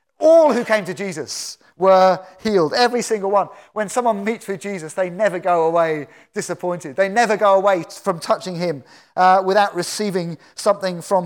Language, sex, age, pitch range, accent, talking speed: English, male, 30-49, 165-205 Hz, British, 170 wpm